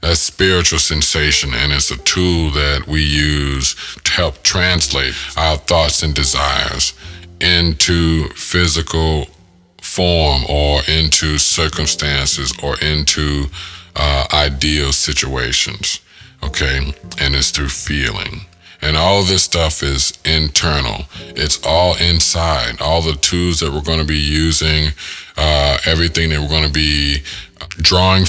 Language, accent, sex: English, American, male